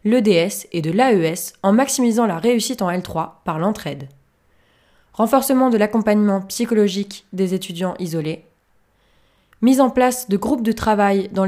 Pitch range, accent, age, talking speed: 170-230 Hz, French, 20-39, 140 wpm